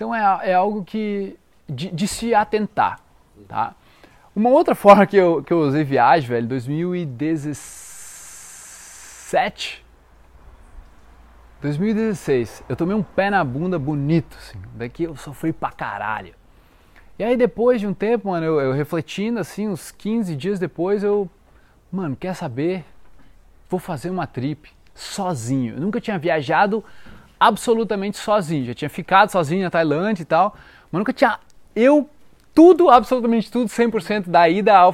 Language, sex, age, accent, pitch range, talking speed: Portuguese, male, 20-39, Brazilian, 150-205 Hz, 145 wpm